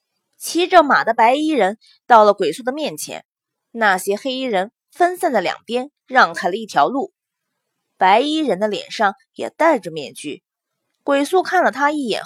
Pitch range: 200-315 Hz